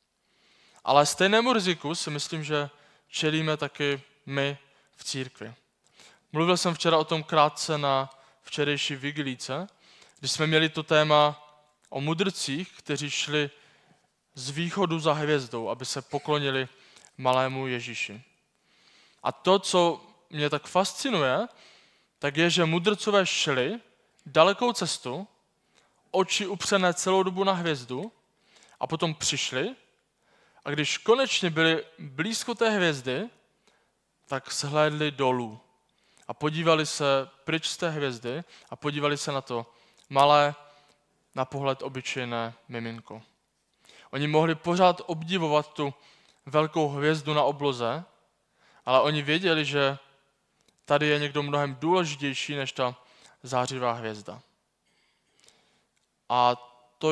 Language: Czech